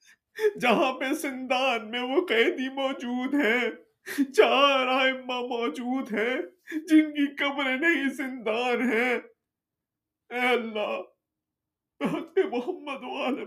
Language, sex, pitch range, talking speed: Urdu, male, 210-320 Hz, 95 wpm